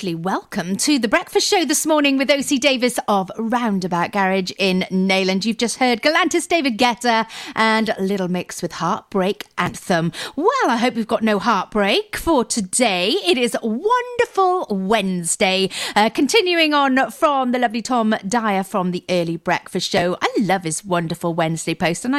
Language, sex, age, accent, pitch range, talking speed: English, female, 40-59, British, 190-310 Hz, 160 wpm